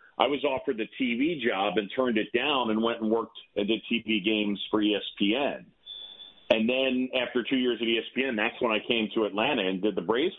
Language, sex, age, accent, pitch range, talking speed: English, male, 40-59, American, 125-200 Hz, 215 wpm